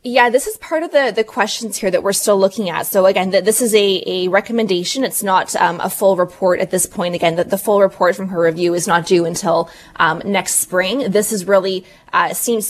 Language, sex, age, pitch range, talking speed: English, female, 20-39, 175-205 Hz, 240 wpm